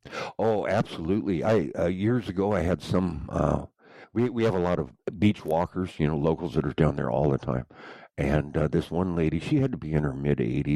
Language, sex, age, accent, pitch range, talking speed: English, male, 60-79, American, 75-105 Hz, 235 wpm